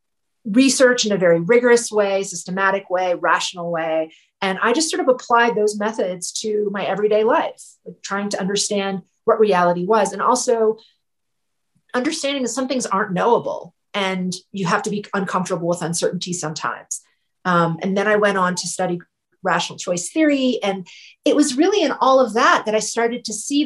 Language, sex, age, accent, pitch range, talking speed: English, female, 30-49, American, 185-240 Hz, 175 wpm